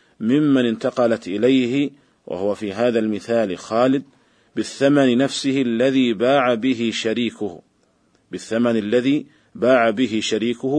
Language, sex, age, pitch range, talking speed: Arabic, male, 40-59, 110-130 Hz, 105 wpm